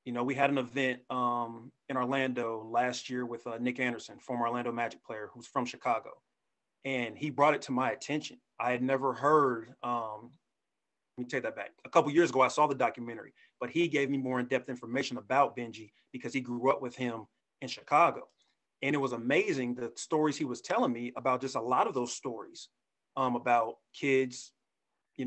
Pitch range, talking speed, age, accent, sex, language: 120-140 Hz, 200 wpm, 30-49, American, male, English